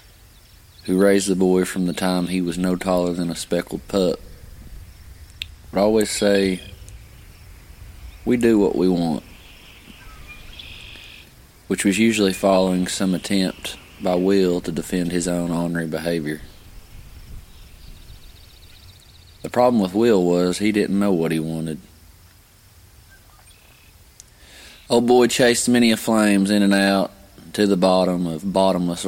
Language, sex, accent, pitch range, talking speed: English, male, American, 85-100 Hz, 130 wpm